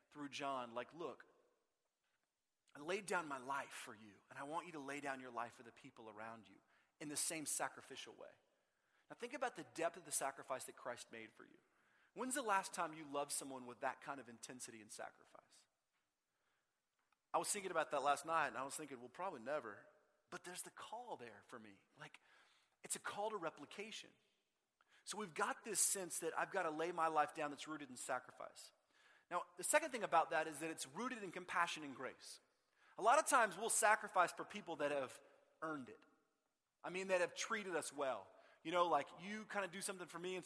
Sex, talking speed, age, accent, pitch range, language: male, 215 wpm, 30-49, American, 145-205 Hz, English